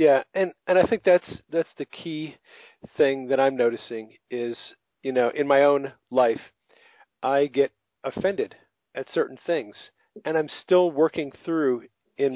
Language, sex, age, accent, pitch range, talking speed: English, male, 40-59, American, 125-160 Hz, 155 wpm